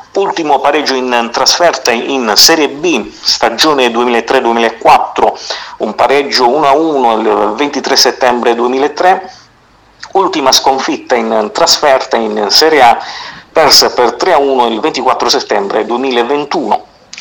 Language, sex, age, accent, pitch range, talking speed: Italian, male, 50-69, native, 125-160 Hz, 100 wpm